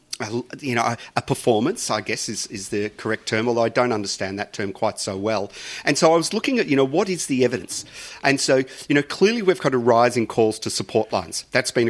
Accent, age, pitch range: Australian, 40-59, 110-130 Hz